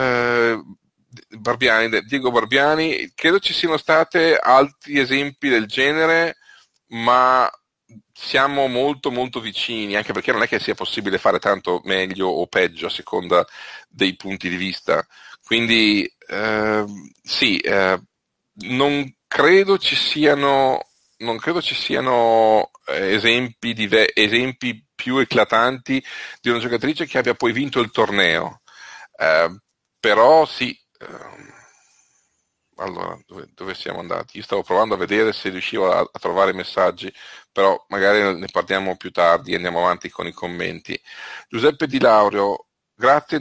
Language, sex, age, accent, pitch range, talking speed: Italian, male, 40-59, native, 100-135 Hz, 135 wpm